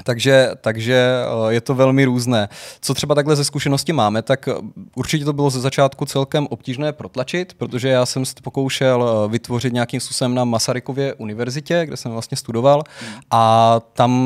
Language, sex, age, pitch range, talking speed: Czech, male, 20-39, 125-140 Hz, 160 wpm